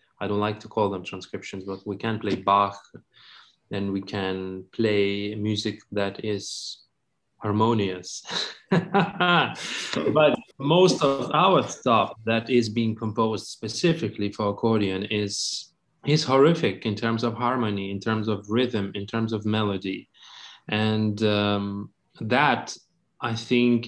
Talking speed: 130 wpm